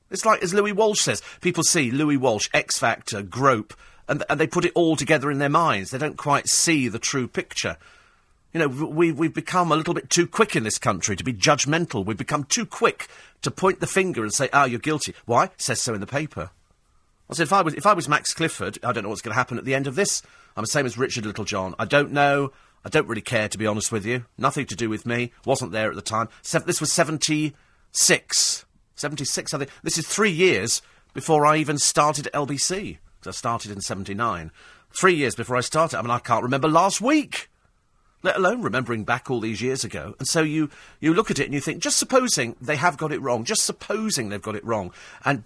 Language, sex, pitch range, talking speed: English, male, 115-165 Hz, 245 wpm